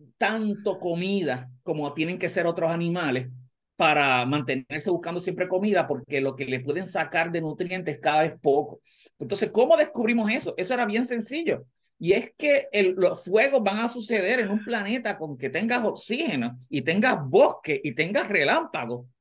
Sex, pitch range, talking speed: male, 155-240 Hz, 170 wpm